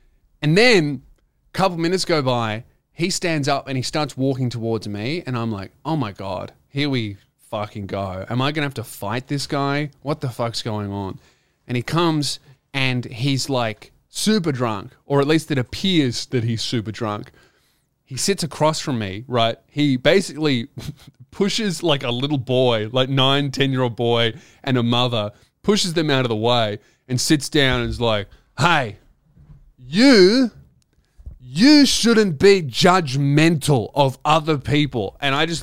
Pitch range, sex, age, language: 120-160 Hz, male, 20-39, English